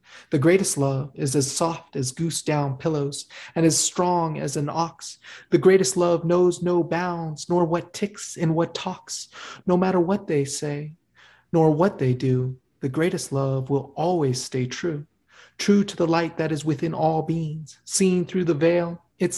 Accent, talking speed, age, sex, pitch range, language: American, 180 wpm, 30-49, male, 150-180 Hz, English